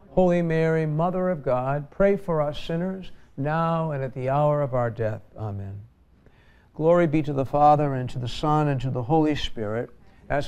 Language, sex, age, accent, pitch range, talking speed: English, male, 60-79, American, 110-155 Hz, 190 wpm